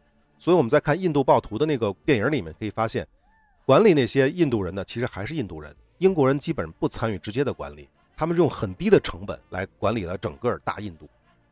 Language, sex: Chinese, male